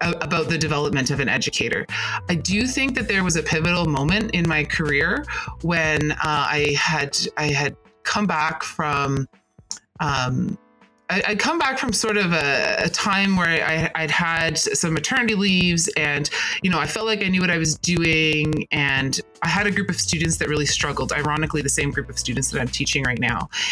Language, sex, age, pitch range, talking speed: English, female, 30-49, 150-180 Hz, 195 wpm